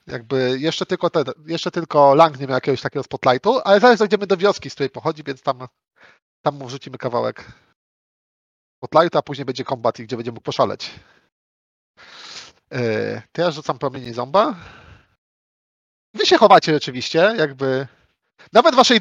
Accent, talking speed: native, 155 wpm